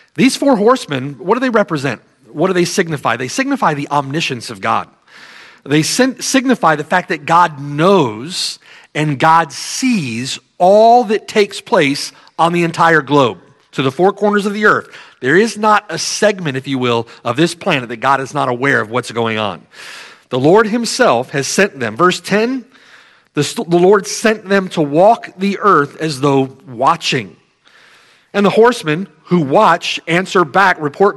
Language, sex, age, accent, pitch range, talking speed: English, male, 40-59, American, 145-210 Hz, 170 wpm